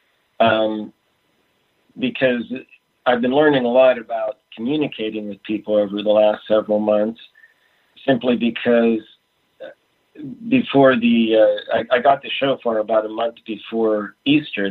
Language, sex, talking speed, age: English, male, 125 wpm, 50-69